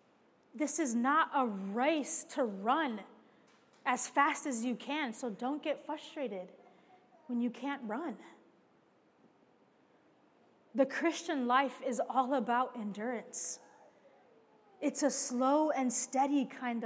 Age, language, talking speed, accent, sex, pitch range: 20-39, English, 115 wpm, American, female, 240-295 Hz